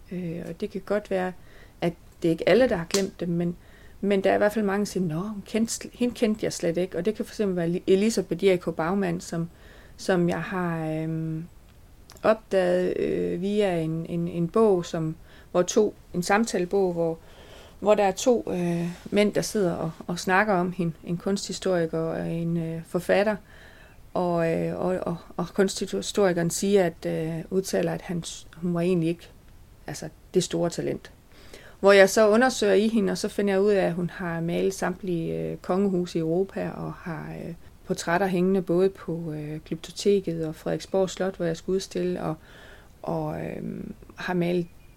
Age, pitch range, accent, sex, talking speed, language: 30-49, 165-195 Hz, Danish, female, 180 wpm, English